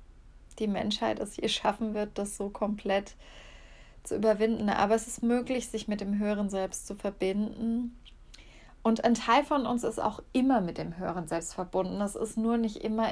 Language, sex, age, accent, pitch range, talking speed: German, female, 20-39, German, 195-220 Hz, 185 wpm